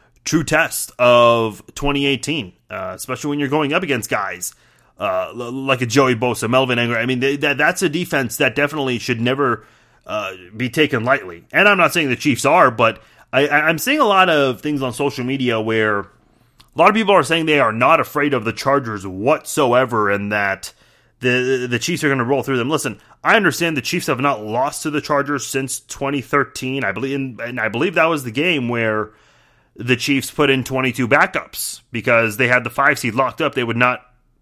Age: 30-49